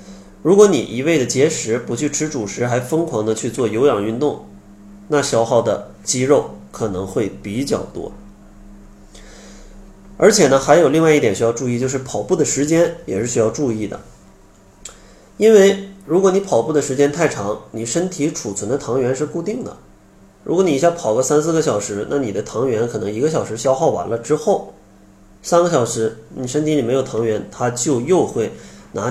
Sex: male